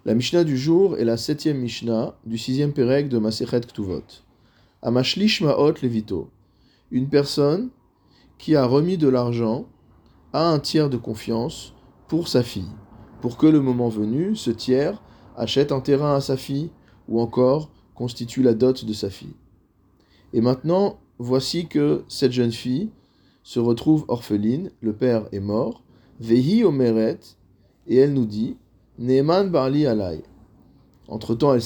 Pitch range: 115-145 Hz